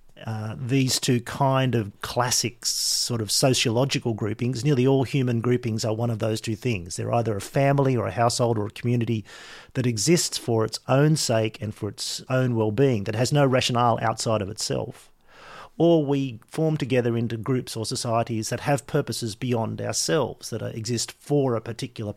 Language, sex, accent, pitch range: English, male, Australian, 110-130 Hz